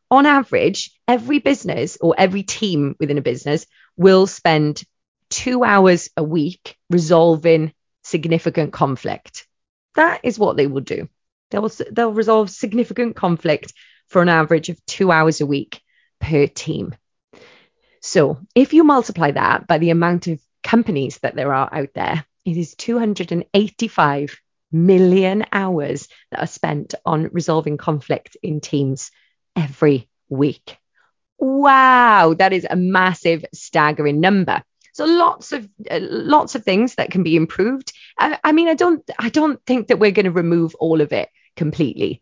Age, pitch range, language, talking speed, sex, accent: 30-49, 155-235 Hz, English, 150 wpm, female, British